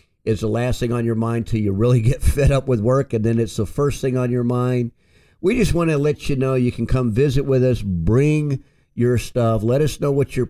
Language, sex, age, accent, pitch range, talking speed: English, male, 50-69, American, 105-130 Hz, 255 wpm